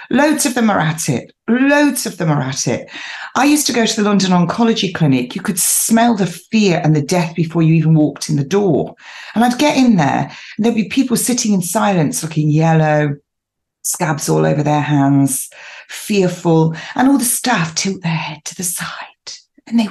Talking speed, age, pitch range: 205 wpm, 40-59, 160-230 Hz